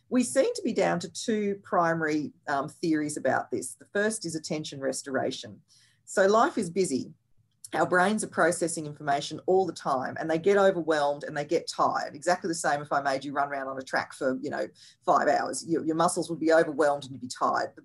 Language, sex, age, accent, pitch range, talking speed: English, female, 40-59, Australian, 145-185 Hz, 220 wpm